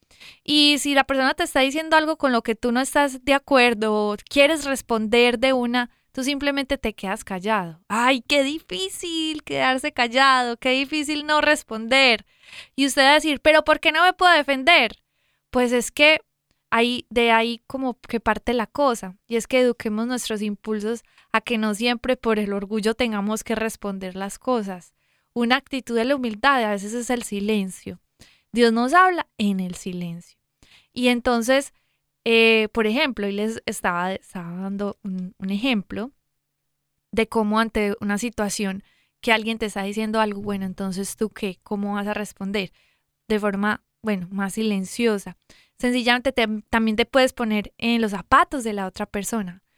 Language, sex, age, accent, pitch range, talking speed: Spanish, female, 20-39, Colombian, 210-265 Hz, 170 wpm